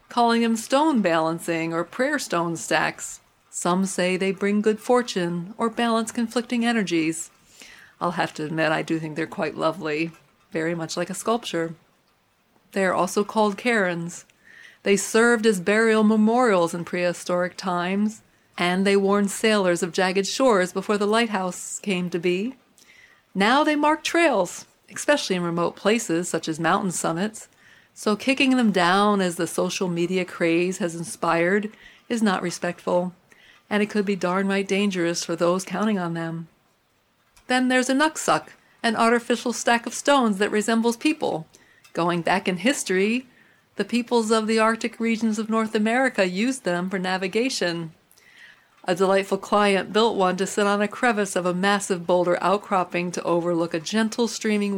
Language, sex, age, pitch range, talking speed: English, female, 40-59, 175-225 Hz, 160 wpm